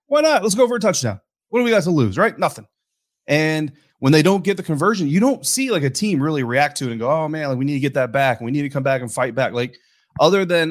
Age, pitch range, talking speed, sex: 30-49, 115-150 Hz, 310 wpm, male